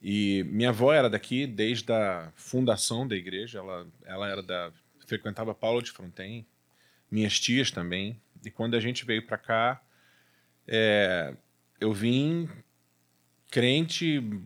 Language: Portuguese